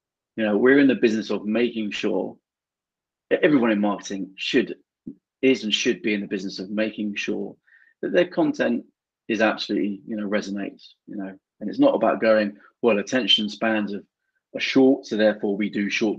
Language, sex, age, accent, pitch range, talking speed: English, male, 30-49, British, 100-130 Hz, 180 wpm